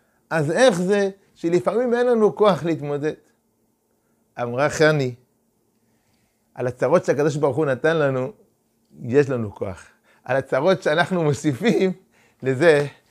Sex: male